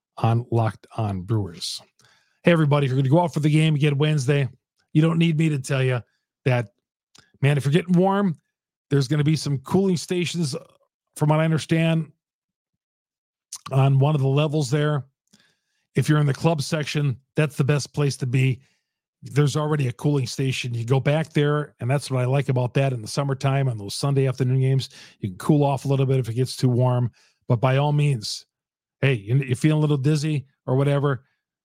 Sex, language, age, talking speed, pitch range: male, English, 40-59, 205 wpm, 125-150 Hz